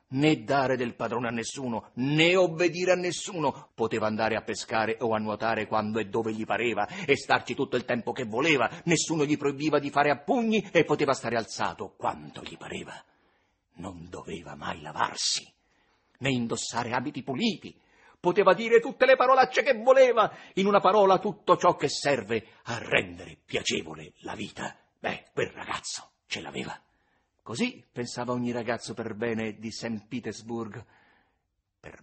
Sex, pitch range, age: male, 115-185 Hz, 50-69